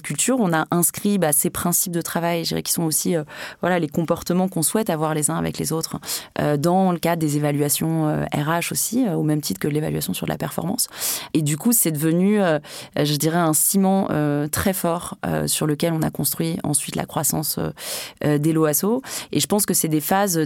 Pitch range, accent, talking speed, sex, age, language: 150-185 Hz, French, 230 wpm, female, 20-39, French